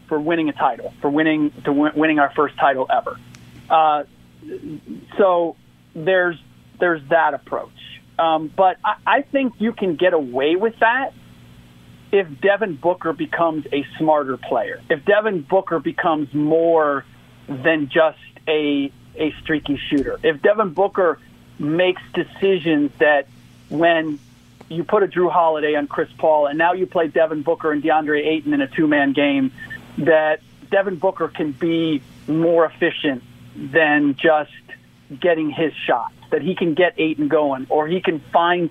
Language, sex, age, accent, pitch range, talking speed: English, male, 40-59, American, 150-190 Hz, 150 wpm